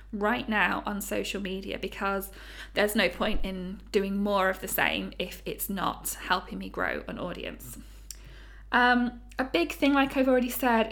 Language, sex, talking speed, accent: English, female, 170 wpm, British